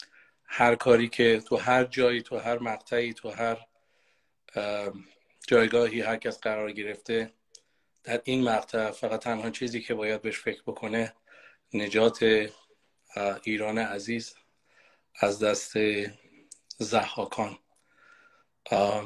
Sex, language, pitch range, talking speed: male, Persian, 110-120 Hz, 105 wpm